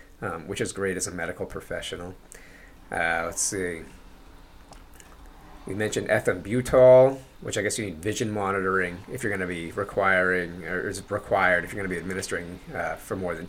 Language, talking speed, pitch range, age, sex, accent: English, 180 wpm, 95-120 Hz, 30-49, male, American